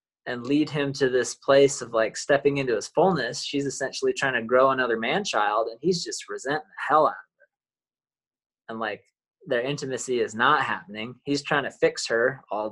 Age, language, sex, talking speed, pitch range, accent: 20-39, English, male, 200 wpm, 115-170 Hz, American